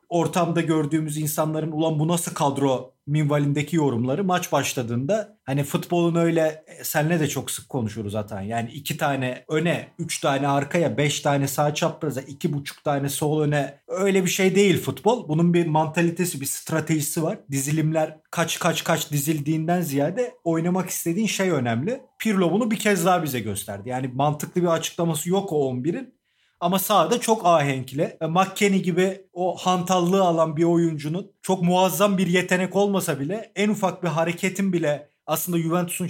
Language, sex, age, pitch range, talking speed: Turkish, male, 40-59, 145-185 Hz, 160 wpm